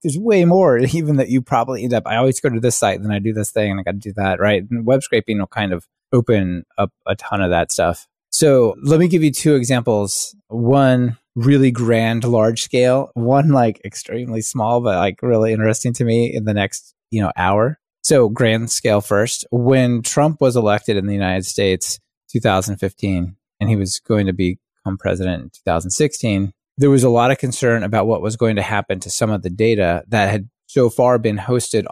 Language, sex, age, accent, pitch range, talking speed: English, male, 20-39, American, 100-125 Hz, 215 wpm